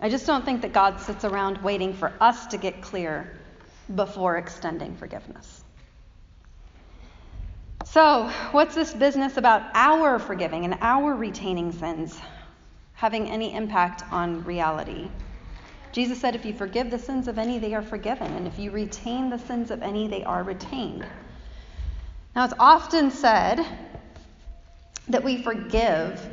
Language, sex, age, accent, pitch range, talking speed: English, female, 40-59, American, 190-250 Hz, 145 wpm